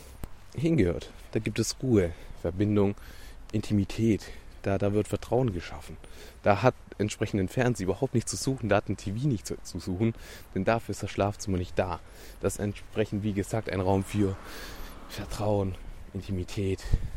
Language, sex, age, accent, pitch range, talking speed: German, male, 20-39, German, 90-110 Hz, 155 wpm